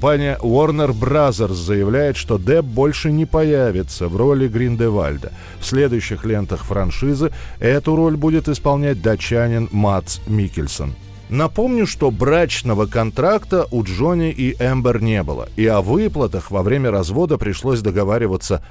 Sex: male